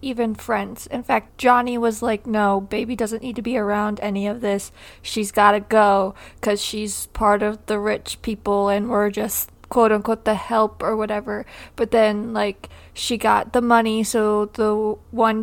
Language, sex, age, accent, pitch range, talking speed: English, female, 20-39, American, 210-235 Hz, 175 wpm